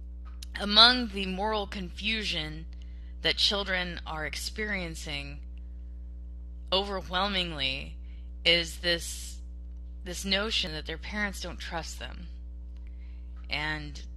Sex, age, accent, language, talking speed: female, 20-39, American, English, 85 wpm